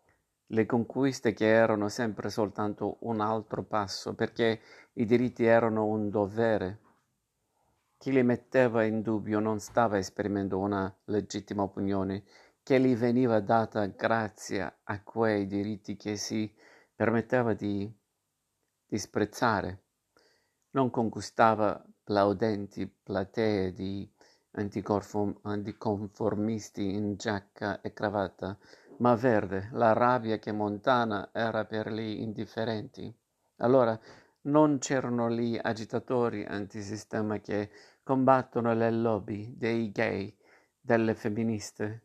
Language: Italian